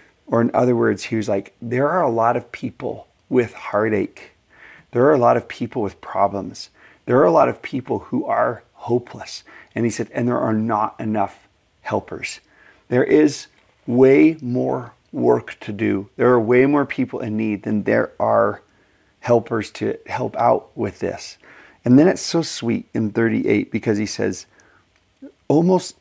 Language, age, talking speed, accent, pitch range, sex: English, 40-59, 175 wpm, American, 105-135 Hz, male